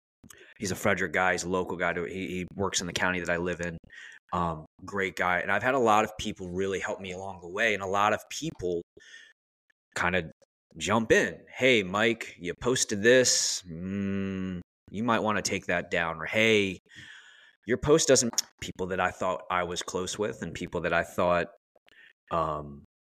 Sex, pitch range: male, 85-105 Hz